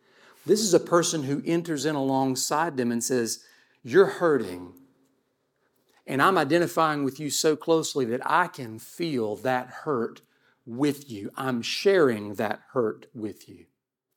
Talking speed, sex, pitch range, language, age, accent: 145 wpm, male, 120-150 Hz, English, 50-69, American